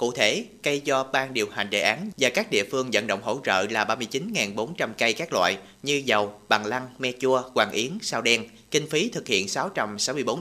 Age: 30-49